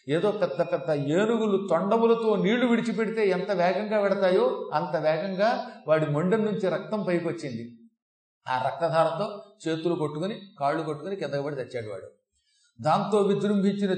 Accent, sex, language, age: native, male, Telugu, 40-59